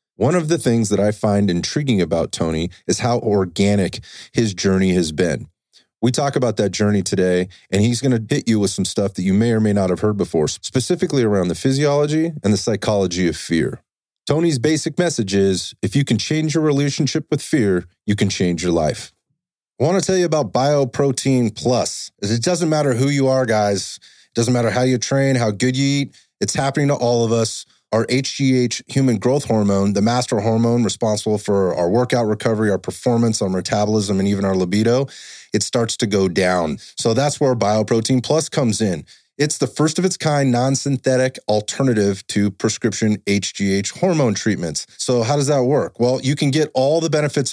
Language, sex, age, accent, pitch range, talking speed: English, male, 30-49, American, 100-135 Hz, 195 wpm